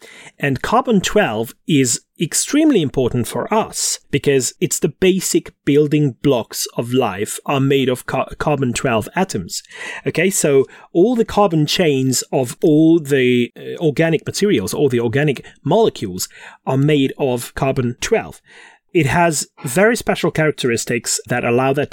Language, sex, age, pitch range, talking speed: English, male, 30-49, 130-170 Hz, 130 wpm